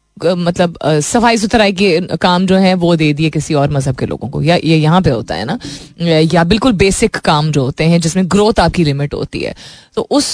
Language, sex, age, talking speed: Hindi, female, 20-39, 220 wpm